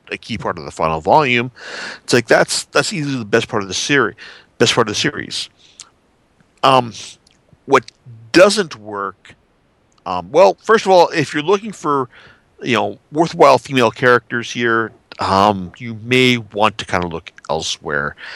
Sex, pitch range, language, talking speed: male, 100-130 Hz, English, 165 wpm